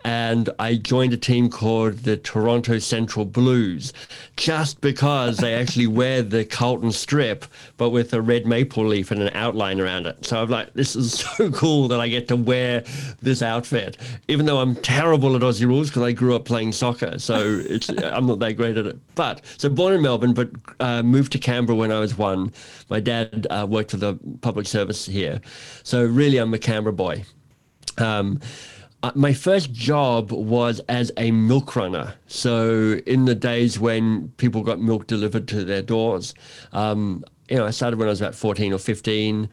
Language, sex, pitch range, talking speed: English, male, 110-125 Hz, 195 wpm